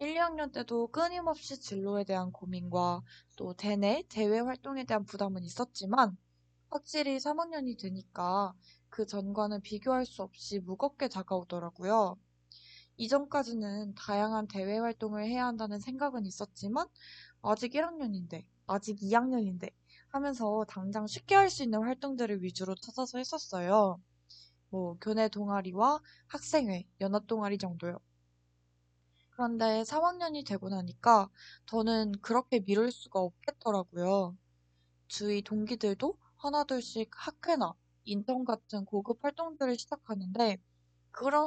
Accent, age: native, 20-39